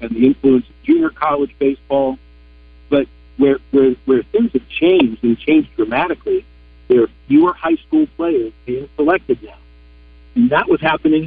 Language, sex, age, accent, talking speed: English, male, 50-69, American, 160 wpm